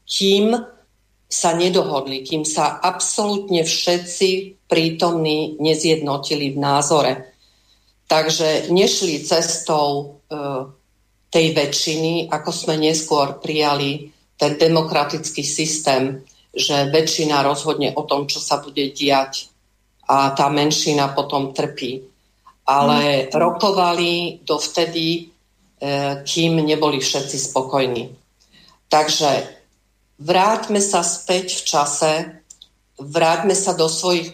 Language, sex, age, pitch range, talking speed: Slovak, female, 50-69, 140-170 Hz, 100 wpm